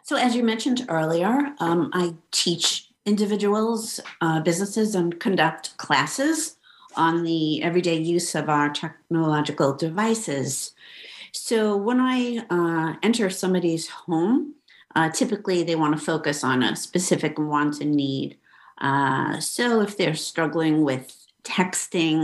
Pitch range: 150-185 Hz